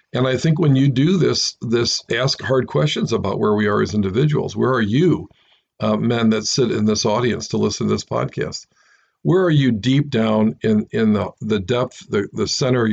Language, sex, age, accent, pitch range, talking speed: English, male, 50-69, American, 115-135 Hz, 215 wpm